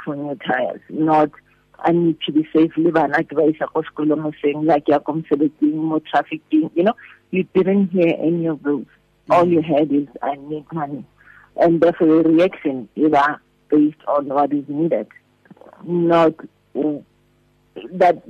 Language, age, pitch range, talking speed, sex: English, 50-69, 150-170 Hz, 155 wpm, female